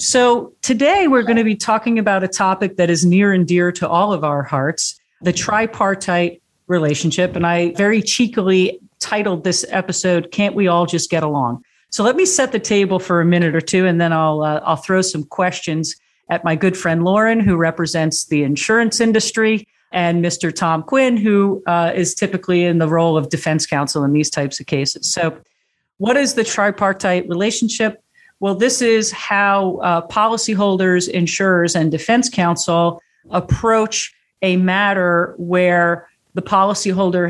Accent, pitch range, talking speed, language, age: American, 170-205 Hz, 170 wpm, English, 40-59